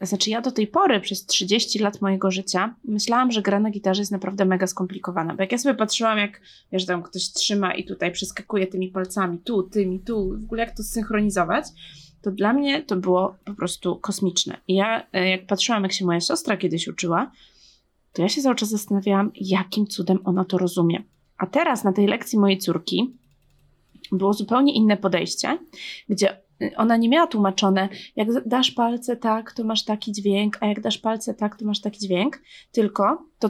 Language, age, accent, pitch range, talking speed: Polish, 20-39, native, 190-225 Hz, 190 wpm